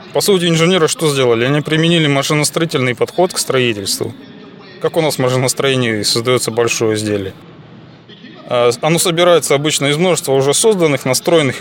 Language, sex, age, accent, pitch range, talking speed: Russian, male, 20-39, native, 125-165 Hz, 140 wpm